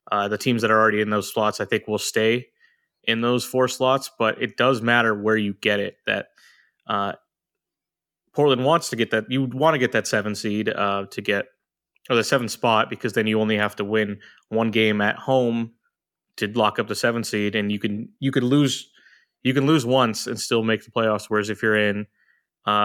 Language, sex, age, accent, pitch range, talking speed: English, male, 20-39, American, 105-125 Hz, 220 wpm